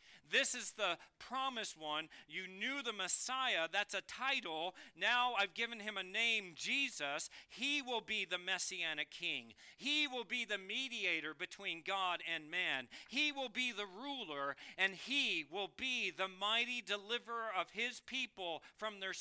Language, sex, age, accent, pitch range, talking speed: English, male, 40-59, American, 155-220 Hz, 160 wpm